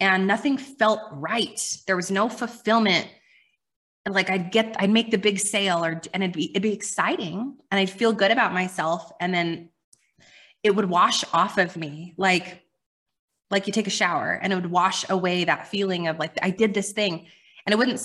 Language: English